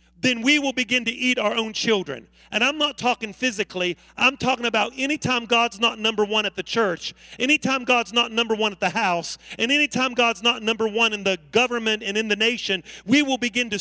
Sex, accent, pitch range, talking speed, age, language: male, American, 220-265 Hz, 215 wpm, 40-59, English